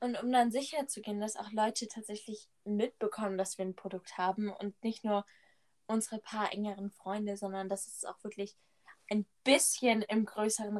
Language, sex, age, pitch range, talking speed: German, female, 10-29, 195-220 Hz, 180 wpm